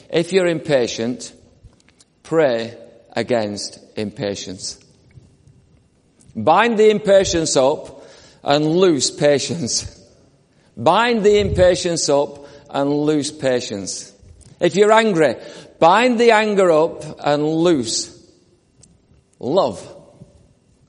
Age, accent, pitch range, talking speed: 50-69, British, 145-215 Hz, 85 wpm